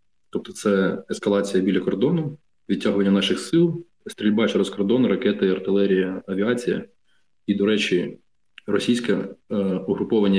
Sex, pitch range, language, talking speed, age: male, 95-110 Hz, Ukrainian, 115 wpm, 20-39